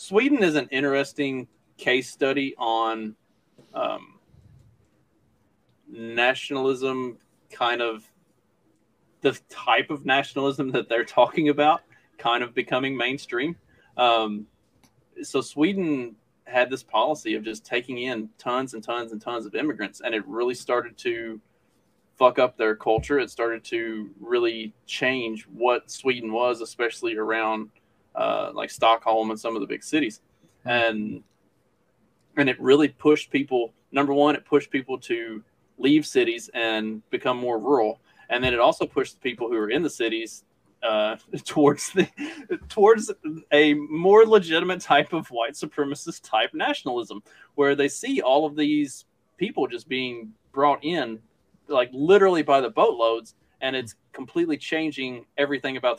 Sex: male